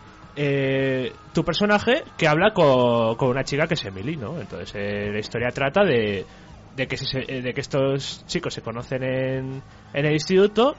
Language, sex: Spanish, male